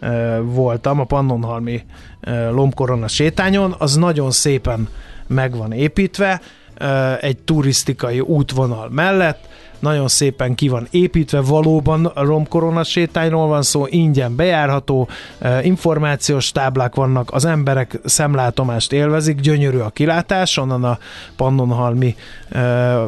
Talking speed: 105 wpm